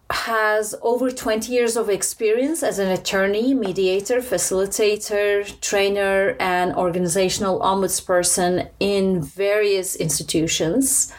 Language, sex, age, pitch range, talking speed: English, female, 30-49, 180-215 Hz, 95 wpm